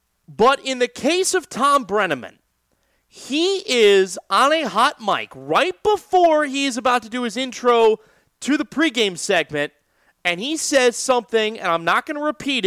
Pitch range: 210-290 Hz